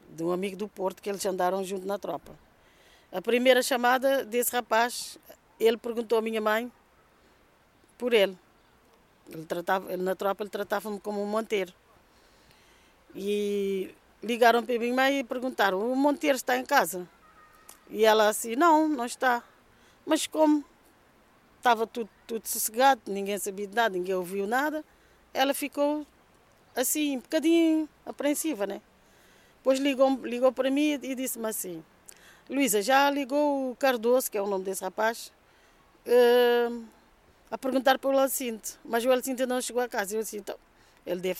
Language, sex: Portuguese, female